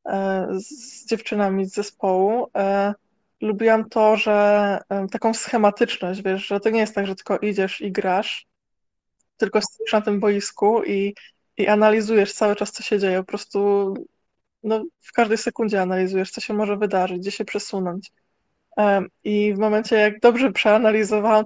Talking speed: 150 wpm